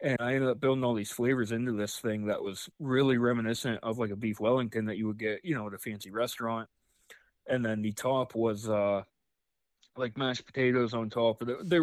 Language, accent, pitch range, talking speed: English, American, 105-125 Hz, 220 wpm